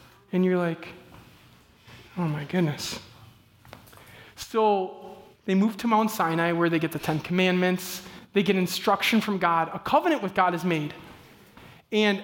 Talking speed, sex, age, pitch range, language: 145 wpm, male, 20-39, 185-255 Hz, English